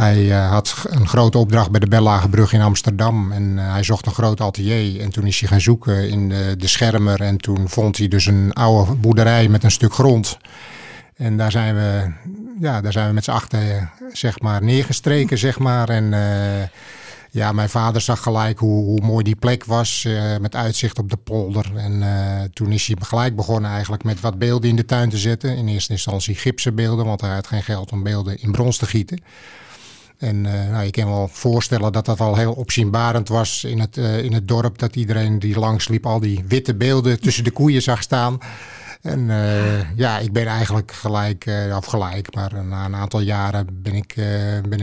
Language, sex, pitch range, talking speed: Dutch, male, 105-115 Hz, 210 wpm